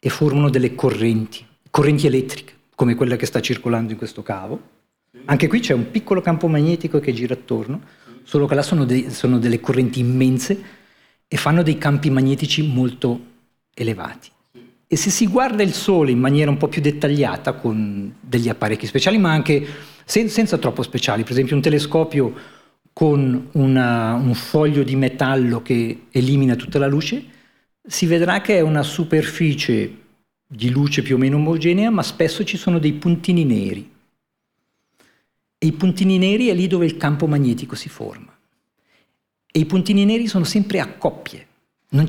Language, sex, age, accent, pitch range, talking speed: Italian, male, 40-59, native, 125-170 Hz, 165 wpm